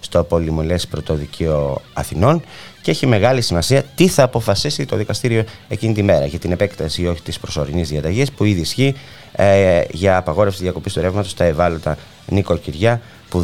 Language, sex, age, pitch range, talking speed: Greek, male, 30-49, 85-110 Hz, 165 wpm